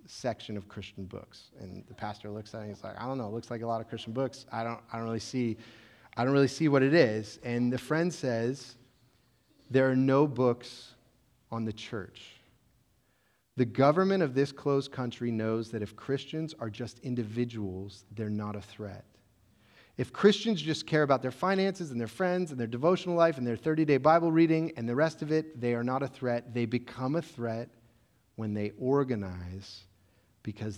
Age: 30-49